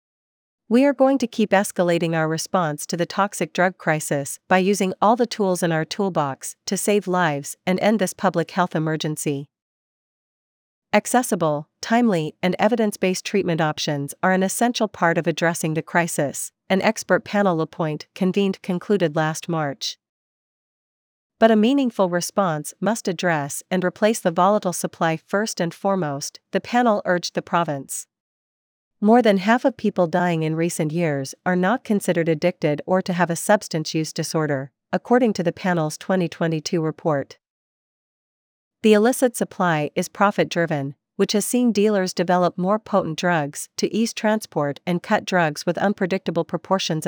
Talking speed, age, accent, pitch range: 150 wpm, 40-59, American, 160-205 Hz